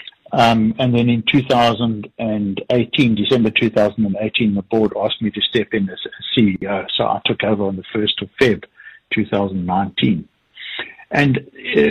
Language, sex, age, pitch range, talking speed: English, male, 60-79, 110-125 Hz, 135 wpm